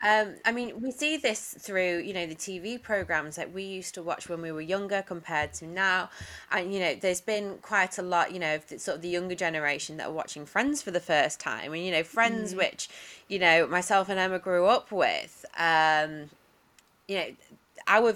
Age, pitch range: 20-39, 155-185 Hz